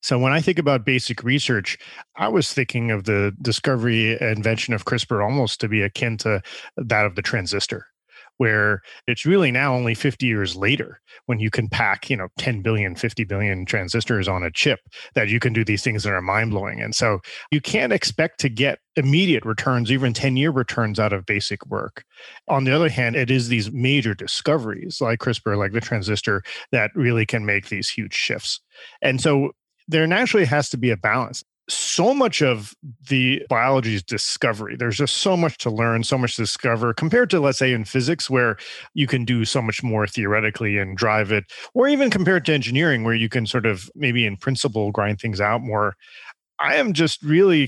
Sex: male